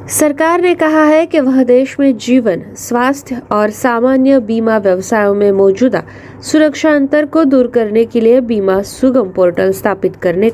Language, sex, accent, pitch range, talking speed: Marathi, female, native, 205-275 Hz, 160 wpm